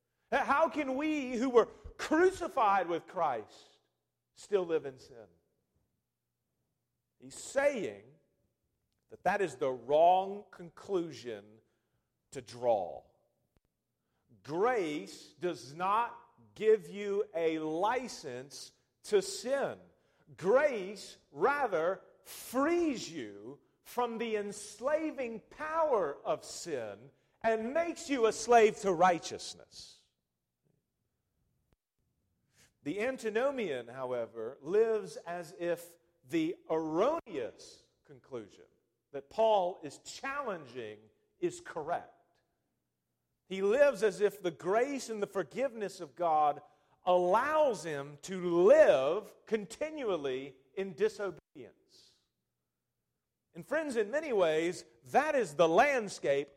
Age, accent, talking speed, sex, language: 40-59, American, 95 wpm, male, English